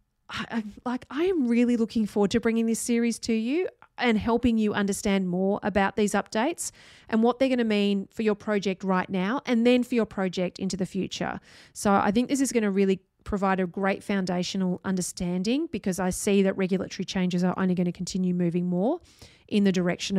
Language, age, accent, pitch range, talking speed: English, 30-49, Australian, 185-225 Hz, 200 wpm